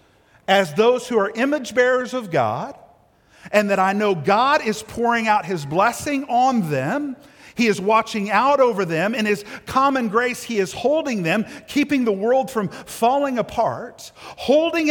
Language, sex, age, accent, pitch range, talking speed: English, male, 50-69, American, 175-245 Hz, 165 wpm